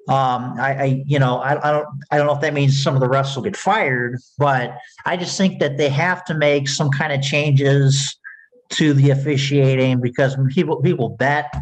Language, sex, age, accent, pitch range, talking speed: English, male, 50-69, American, 130-150 Hz, 215 wpm